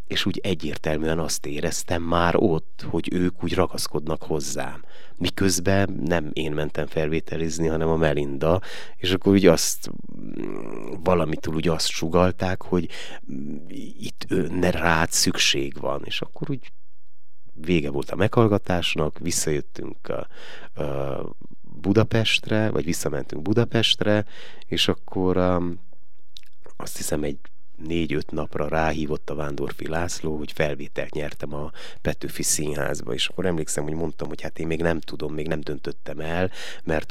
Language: Hungarian